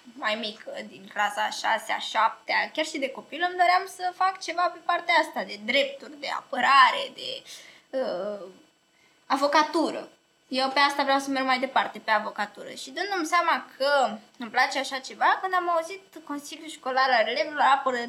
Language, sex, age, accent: Romanian, female, 20-39, native